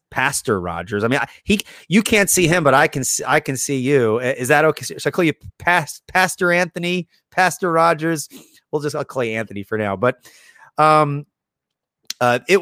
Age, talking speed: 30-49, 190 wpm